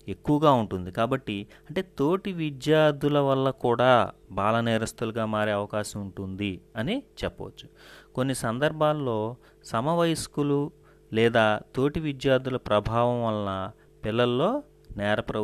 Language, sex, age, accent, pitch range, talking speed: Telugu, male, 30-49, native, 100-125 Hz, 95 wpm